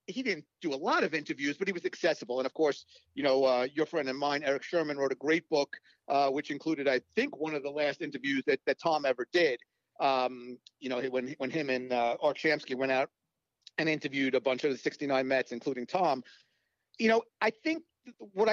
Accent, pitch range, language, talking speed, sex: American, 145-215 Hz, English, 225 wpm, male